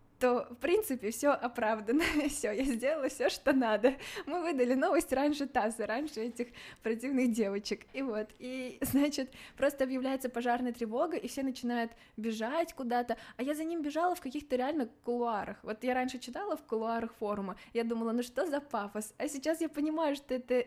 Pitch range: 215-265 Hz